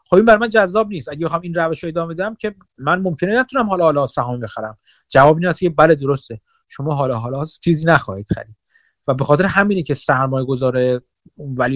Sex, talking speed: male, 200 wpm